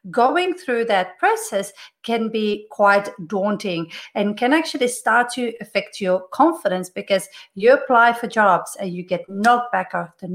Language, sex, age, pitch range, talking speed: English, female, 40-59, 190-245 Hz, 155 wpm